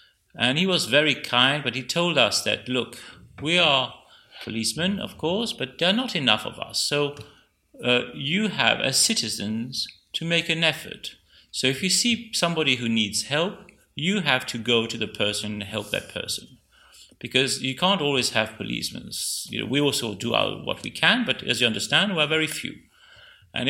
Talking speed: 190 wpm